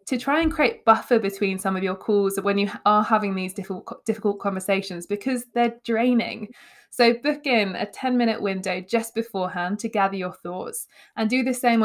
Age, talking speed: 20-39, 195 wpm